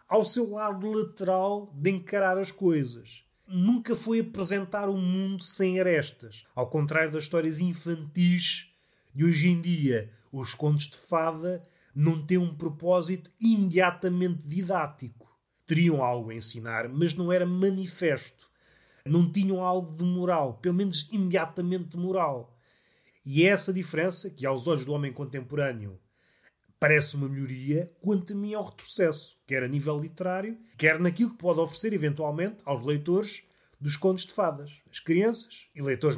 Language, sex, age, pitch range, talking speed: Portuguese, male, 30-49, 145-190 Hz, 150 wpm